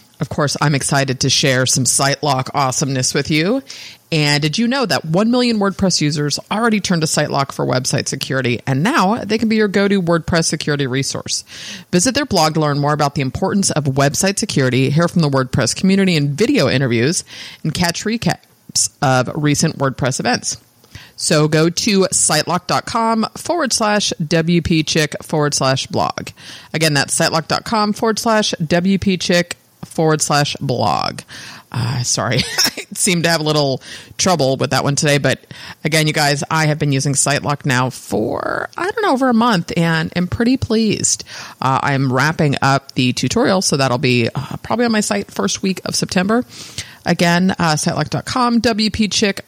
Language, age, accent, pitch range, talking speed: English, 30-49, American, 140-190 Hz, 170 wpm